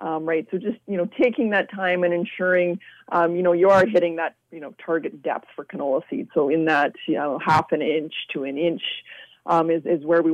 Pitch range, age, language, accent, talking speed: 160-180 Hz, 30-49, English, American, 240 wpm